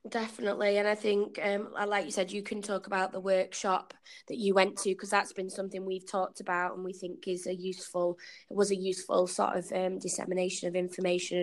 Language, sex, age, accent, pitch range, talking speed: English, female, 20-39, British, 185-205 Hz, 215 wpm